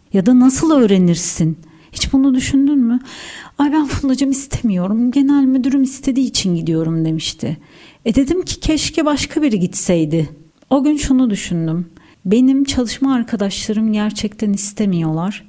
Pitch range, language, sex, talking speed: 190-260 Hz, Turkish, female, 130 wpm